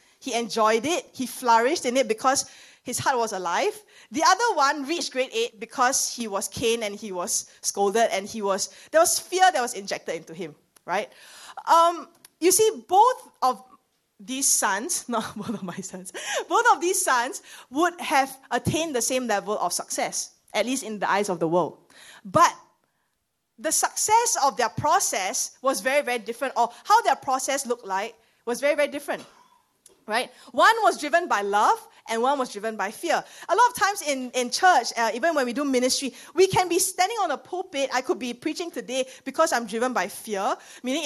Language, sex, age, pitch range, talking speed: English, female, 20-39, 230-340 Hz, 195 wpm